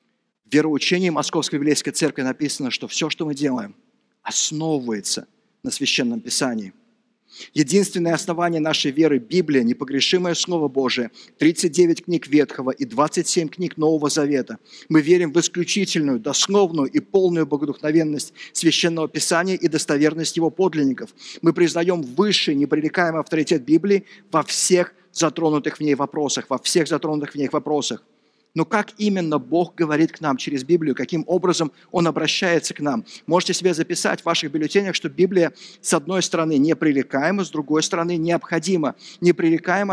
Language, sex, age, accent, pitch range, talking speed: Russian, male, 50-69, native, 155-185 Hz, 145 wpm